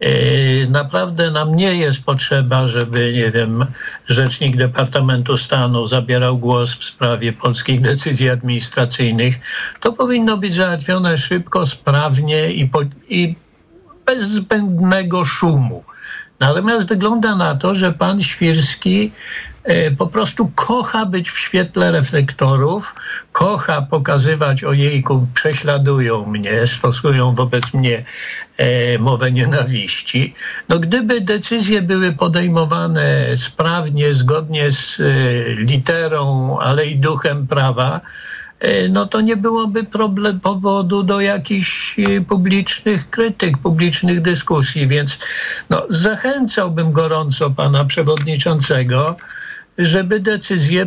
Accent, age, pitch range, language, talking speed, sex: native, 60-79, 130-190 Hz, Polish, 100 wpm, male